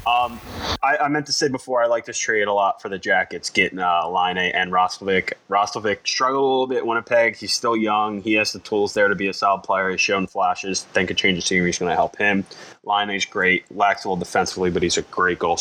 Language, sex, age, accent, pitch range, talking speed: English, male, 20-39, American, 95-120 Hz, 255 wpm